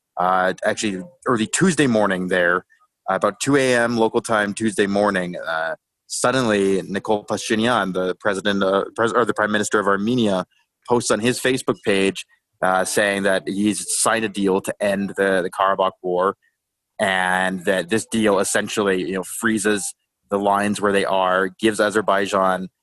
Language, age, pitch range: English, 20-39, 95-115 Hz